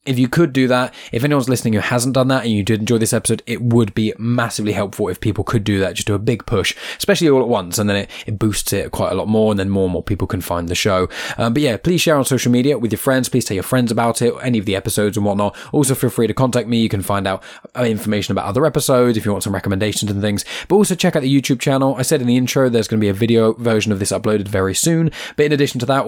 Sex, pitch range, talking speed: male, 100-125 Hz, 300 wpm